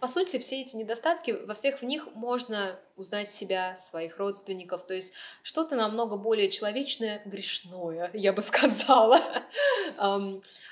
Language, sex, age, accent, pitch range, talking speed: Russian, female, 20-39, native, 180-235 Hz, 140 wpm